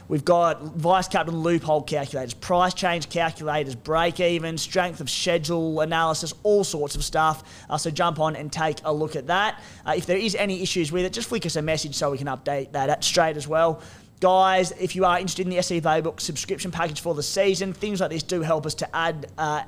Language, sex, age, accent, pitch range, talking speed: English, male, 20-39, Australian, 155-180 Hz, 220 wpm